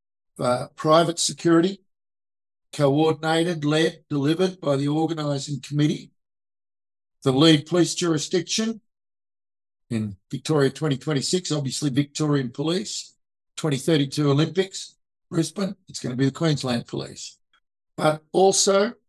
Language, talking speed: English, 95 wpm